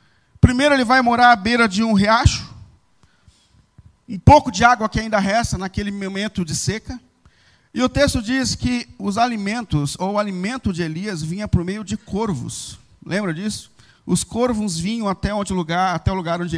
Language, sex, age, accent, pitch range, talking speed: Portuguese, male, 40-59, Brazilian, 185-245 Hz, 165 wpm